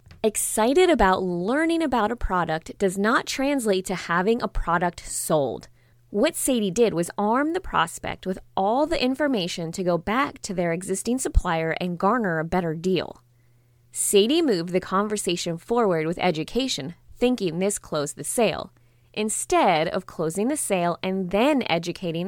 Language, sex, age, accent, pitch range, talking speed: English, female, 20-39, American, 160-235 Hz, 155 wpm